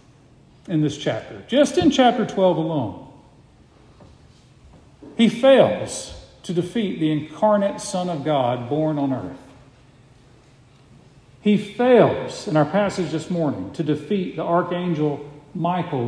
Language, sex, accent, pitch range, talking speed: English, male, American, 135-205 Hz, 120 wpm